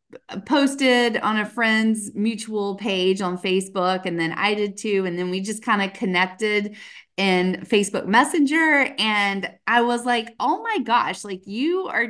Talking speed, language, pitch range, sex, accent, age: 165 wpm, English, 180-230 Hz, female, American, 30-49